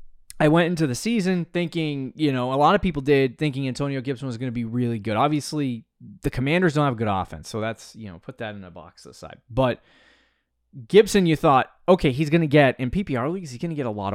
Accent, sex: American, male